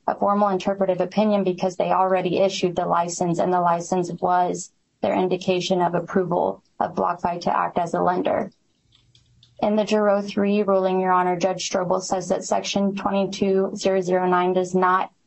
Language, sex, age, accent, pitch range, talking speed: English, female, 20-39, American, 180-200 Hz, 155 wpm